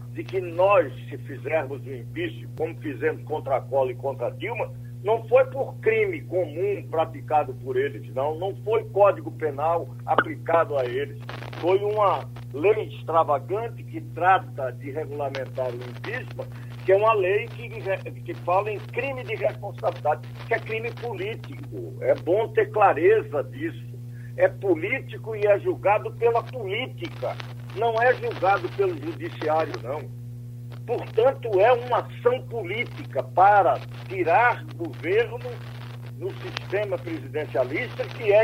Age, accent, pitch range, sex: 60-79, Brazilian, 120-165 Hz, male